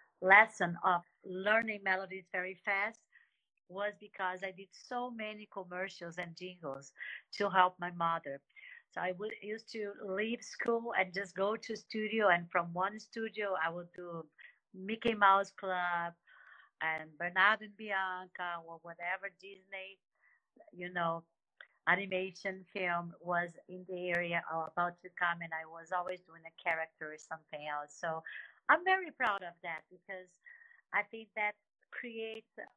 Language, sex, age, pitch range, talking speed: English, female, 50-69, 180-220 Hz, 145 wpm